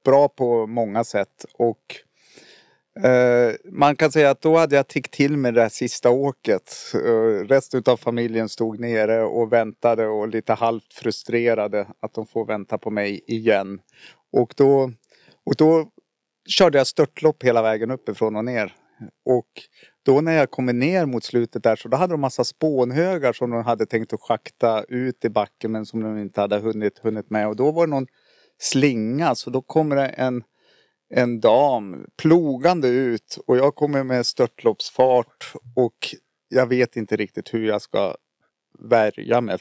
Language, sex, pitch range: Swedish, male, 115-140 Hz